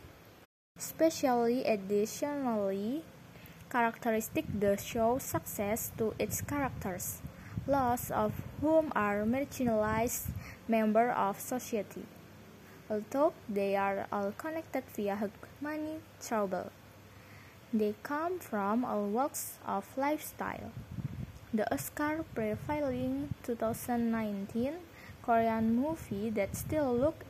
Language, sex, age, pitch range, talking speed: English, female, 20-39, 200-270 Hz, 90 wpm